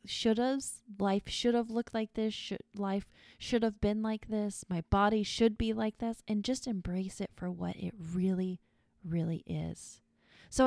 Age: 20-39